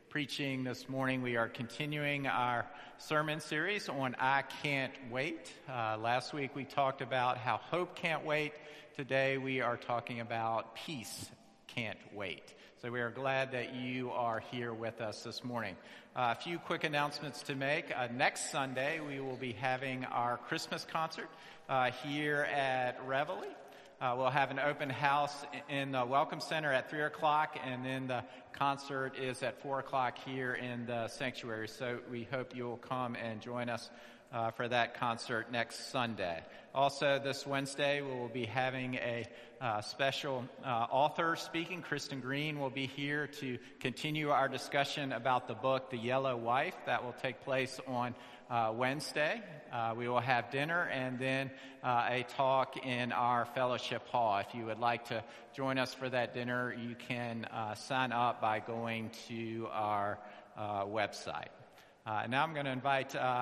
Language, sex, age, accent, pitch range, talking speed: English, male, 50-69, American, 120-140 Hz, 170 wpm